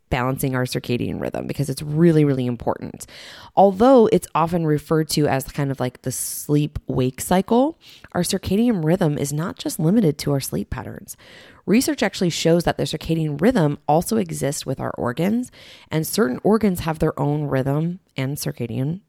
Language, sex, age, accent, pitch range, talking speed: English, female, 20-39, American, 135-180 Hz, 165 wpm